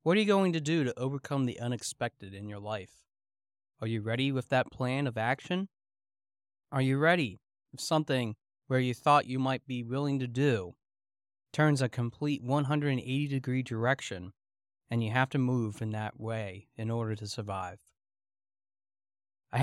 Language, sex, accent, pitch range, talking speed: English, male, American, 115-150 Hz, 165 wpm